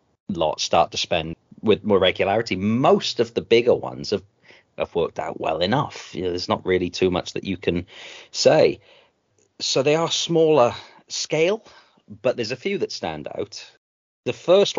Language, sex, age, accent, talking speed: English, male, 40-59, British, 175 wpm